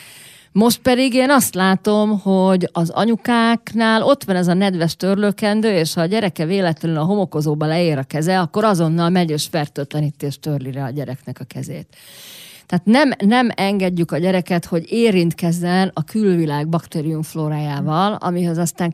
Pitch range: 150-195 Hz